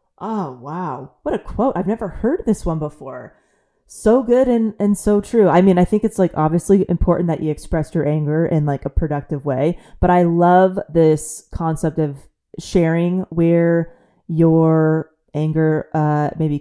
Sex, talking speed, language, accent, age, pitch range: female, 170 wpm, English, American, 20-39, 155-200 Hz